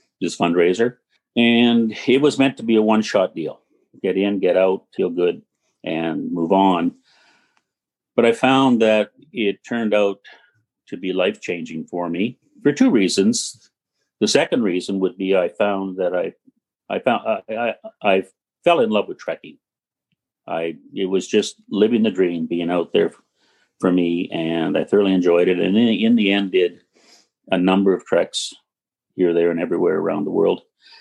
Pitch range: 90-120 Hz